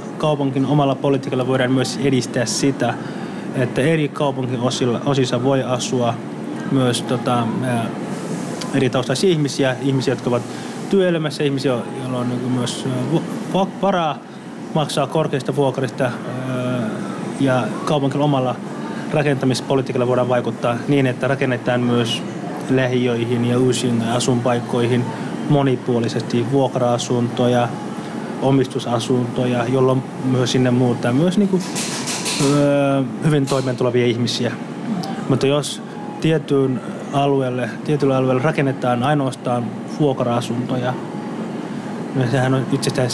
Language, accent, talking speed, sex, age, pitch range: Finnish, native, 95 wpm, male, 20-39, 125-140 Hz